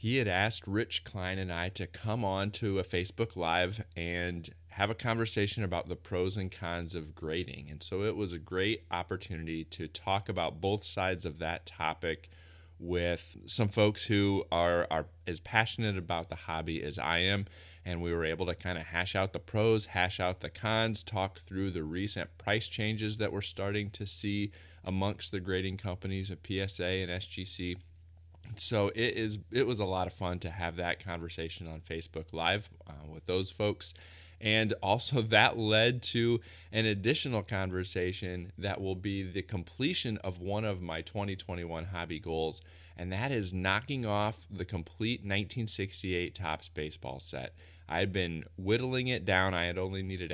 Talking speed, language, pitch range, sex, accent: 180 wpm, English, 85-105 Hz, male, American